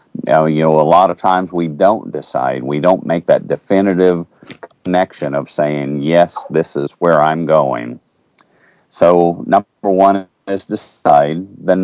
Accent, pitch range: American, 80-95 Hz